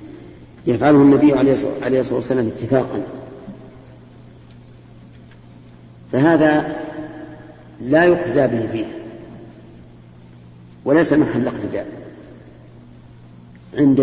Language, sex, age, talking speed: Arabic, female, 50-69, 65 wpm